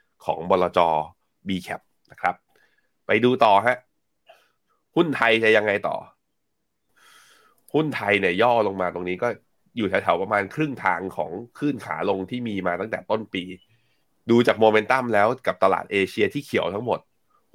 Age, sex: 20-39, male